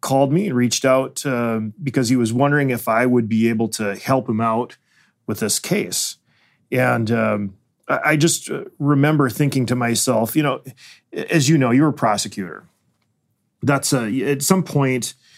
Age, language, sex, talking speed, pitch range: 30-49, English, male, 165 wpm, 110-130 Hz